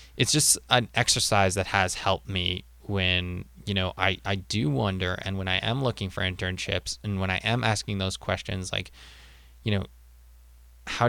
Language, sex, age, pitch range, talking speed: English, male, 20-39, 90-110 Hz, 180 wpm